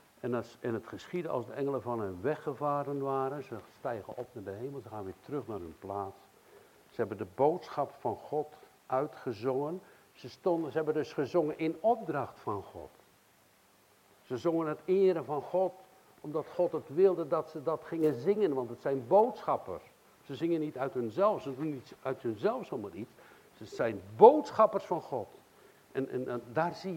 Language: Dutch